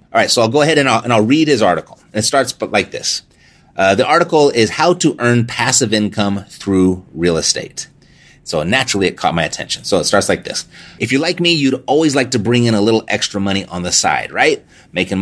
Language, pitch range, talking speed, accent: English, 95-125 Hz, 235 wpm, American